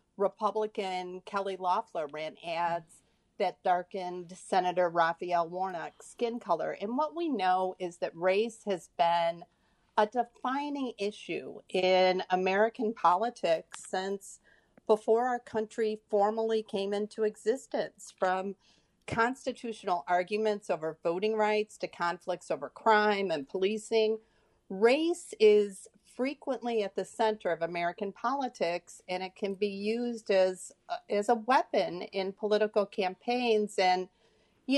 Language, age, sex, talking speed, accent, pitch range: English, 40-59, female, 120 wpm, American, 185-230 Hz